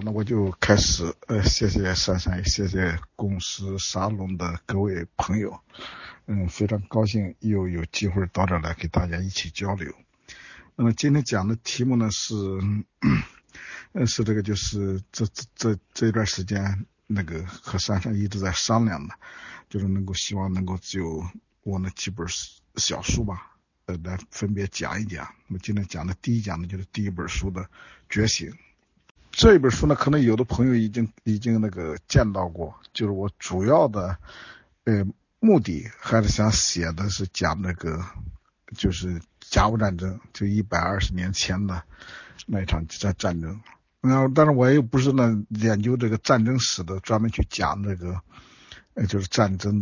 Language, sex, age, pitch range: Chinese, male, 50-69, 90-110 Hz